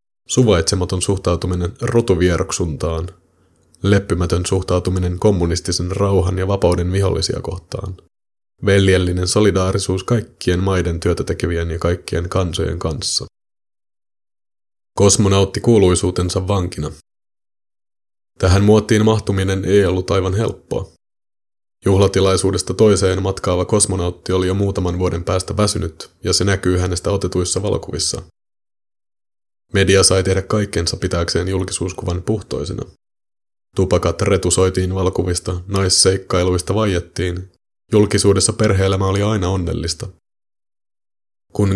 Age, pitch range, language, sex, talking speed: 30-49, 90-100 Hz, Finnish, male, 95 wpm